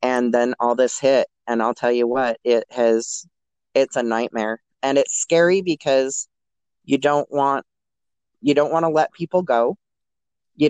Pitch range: 115-140 Hz